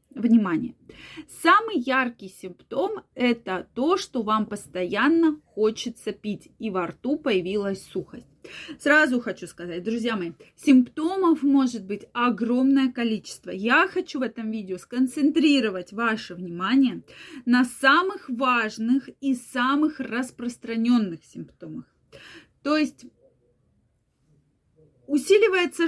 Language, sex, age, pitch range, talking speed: Russian, female, 20-39, 220-280 Hz, 100 wpm